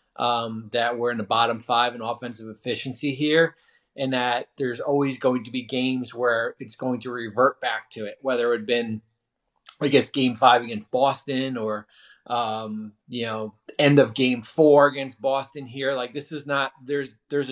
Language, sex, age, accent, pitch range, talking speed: English, male, 30-49, American, 115-135 Hz, 185 wpm